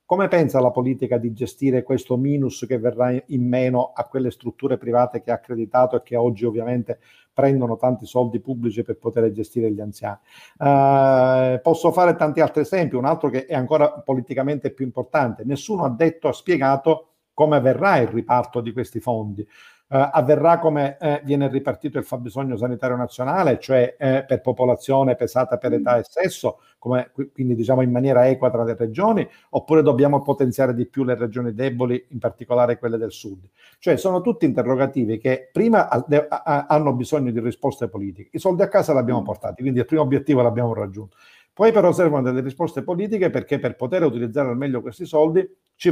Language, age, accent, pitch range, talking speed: Italian, 50-69, native, 120-150 Hz, 180 wpm